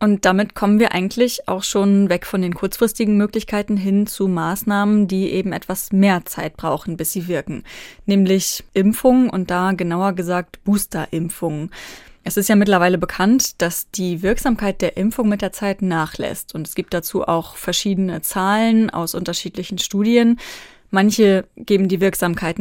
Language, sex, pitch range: German, female, 180-215 Hz